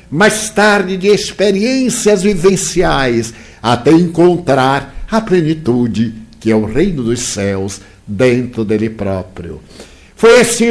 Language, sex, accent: Portuguese, male, Brazilian